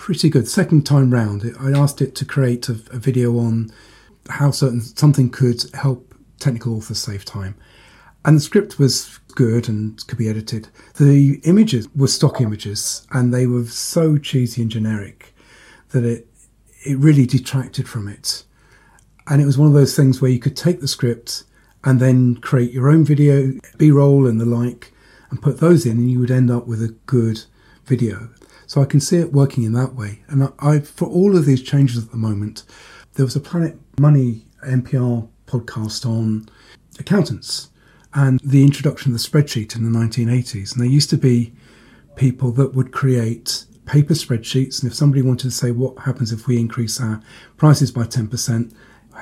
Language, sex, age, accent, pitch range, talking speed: English, male, 40-59, British, 115-140 Hz, 180 wpm